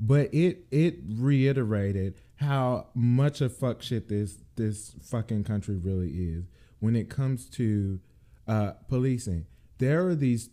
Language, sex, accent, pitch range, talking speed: English, male, American, 100-145 Hz, 135 wpm